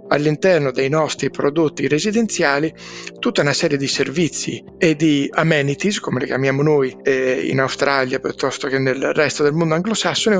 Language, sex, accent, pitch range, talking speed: Italian, male, native, 140-185 Hz, 155 wpm